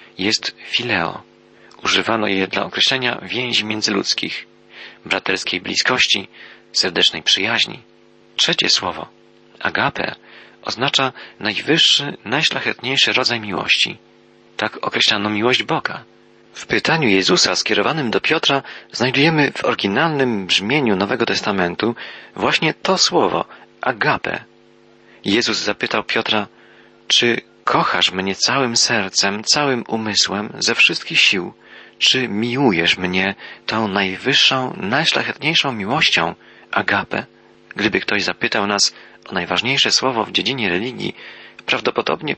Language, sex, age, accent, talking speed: Polish, male, 40-59, native, 100 wpm